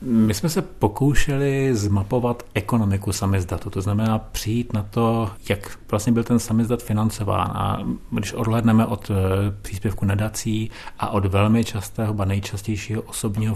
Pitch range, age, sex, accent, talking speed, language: 100-115 Hz, 40-59, male, native, 135 wpm, Czech